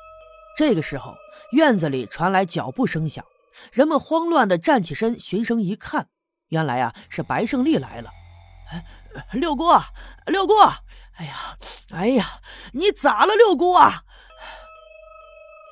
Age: 30-49